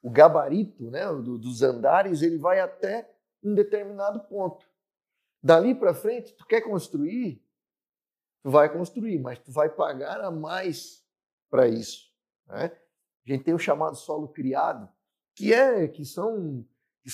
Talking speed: 145 wpm